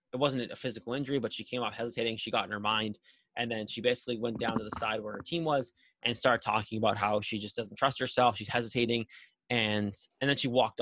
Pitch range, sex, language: 110-135 Hz, male, English